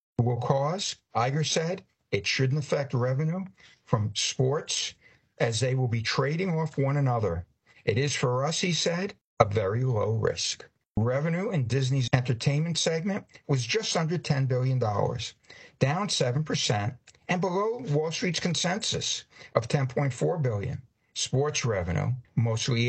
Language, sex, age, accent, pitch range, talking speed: English, male, 60-79, American, 115-150 Hz, 145 wpm